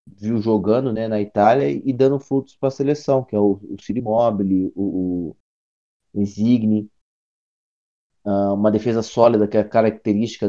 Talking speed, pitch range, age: 155 wpm, 100-110 Hz, 20-39